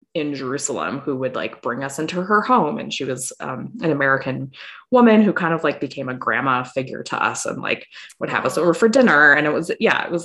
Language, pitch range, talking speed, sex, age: English, 140-175 Hz, 240 wpm, female, 20-39